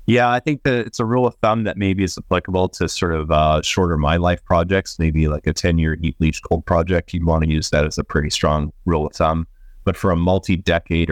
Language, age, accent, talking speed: English, 30-49, American, 250 wpm